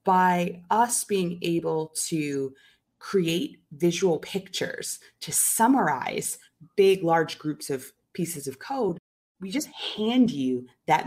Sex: female